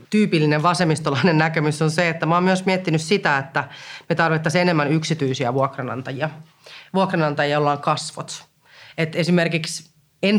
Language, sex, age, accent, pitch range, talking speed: Finnish, female, 30-49, native, 140-180 Hz, 140 wpm